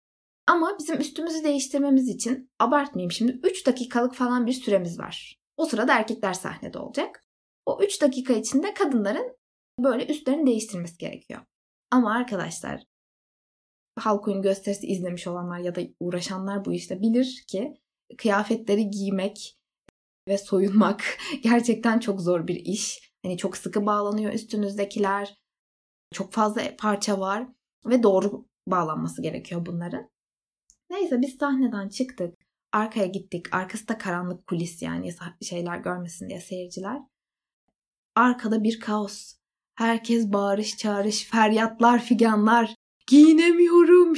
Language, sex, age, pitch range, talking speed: Turkish, female, 20-39, 195-275 Hz, 120 wpm